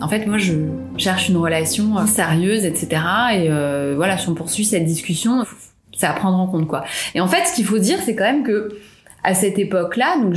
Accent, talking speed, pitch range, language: French, 230 wpm, 170-230 Hz, French